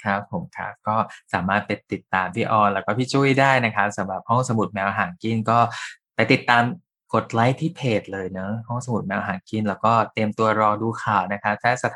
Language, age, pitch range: Thai, 20-39, 100-120 Hz